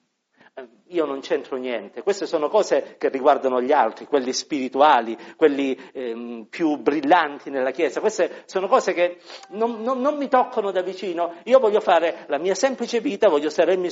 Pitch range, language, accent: 155-250 Hz, Italian, native